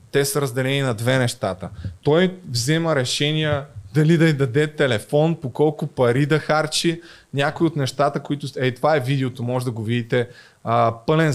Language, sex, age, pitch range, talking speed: Bulgarian, male, 20-39, 120-150 Hz, 170 wpm